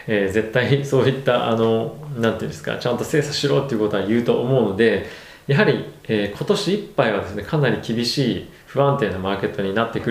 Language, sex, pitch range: Japanese, male, 105-145 Hz